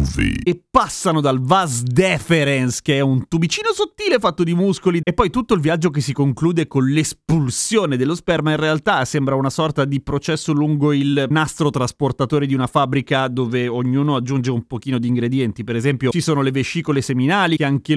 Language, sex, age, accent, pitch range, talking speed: Italian, male, 30-49, native, 130-170 Hz, 185 wpm